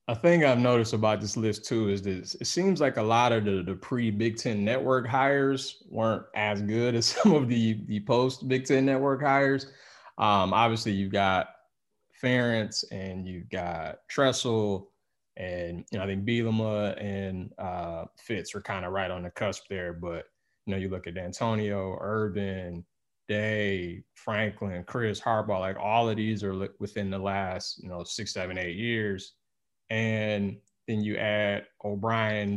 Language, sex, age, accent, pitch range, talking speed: English, male, 20-39, American, 95-115 Hz, 170 wpm